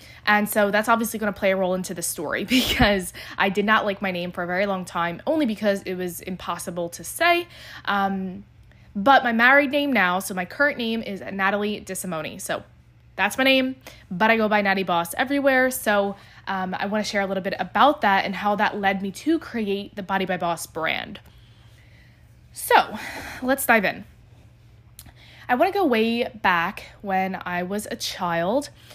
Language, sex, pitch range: English, female, 185-230 Hz